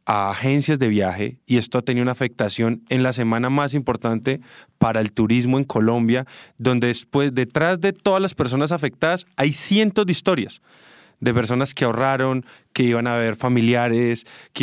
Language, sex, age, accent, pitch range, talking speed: English, male, 20-39, Colombian, 120-150 Hz, 170 wpm